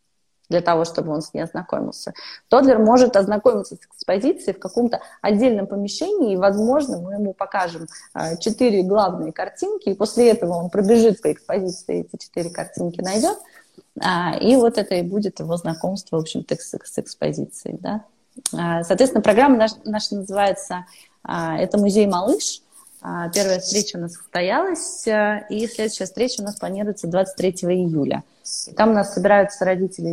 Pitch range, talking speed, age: 175-220 Hz, 145 wpm, 20-39